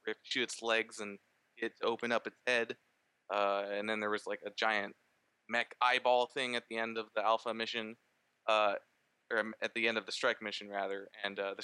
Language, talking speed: English, 205 wpm